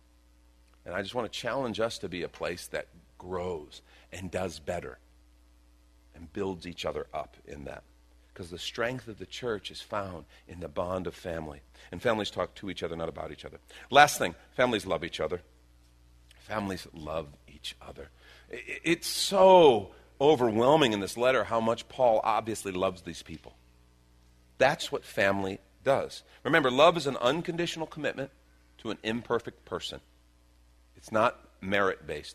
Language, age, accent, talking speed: English, 40-59, American, 160 wpm